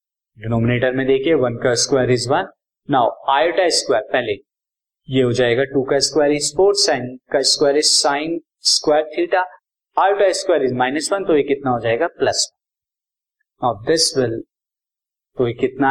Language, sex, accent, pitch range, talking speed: Hindi, male, native, 130-180 Hz, 130 wpm